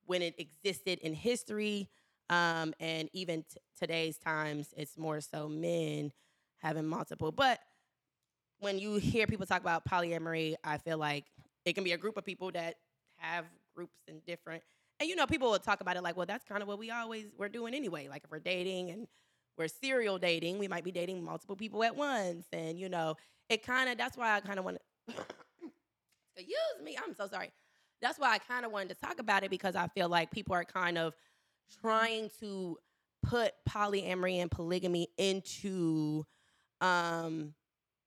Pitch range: 165-205 Hz